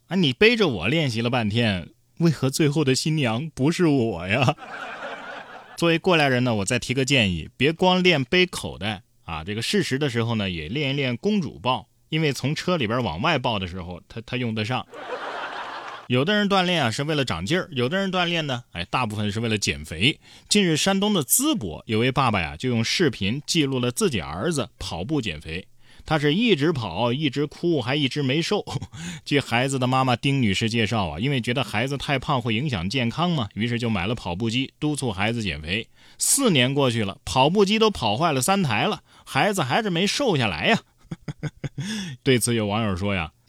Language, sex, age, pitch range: Chinese, male, 20-39, 110-155 Hz